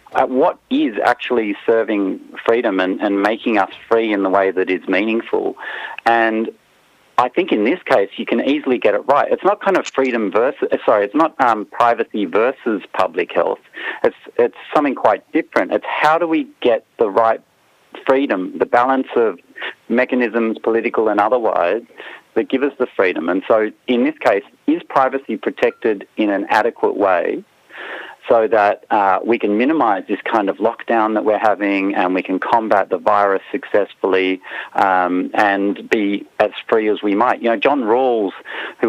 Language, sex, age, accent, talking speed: English, male, 40-59, Australian, 175 wpm